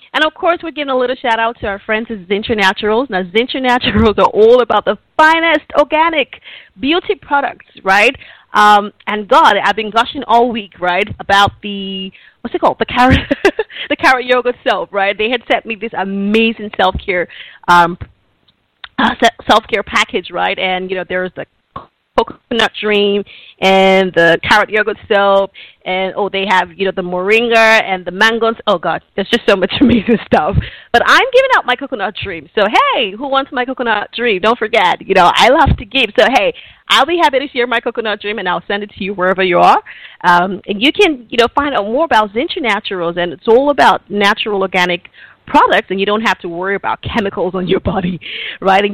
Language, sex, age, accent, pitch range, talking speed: English, female, 30-49, American, 190-250 Hz, 200 wpm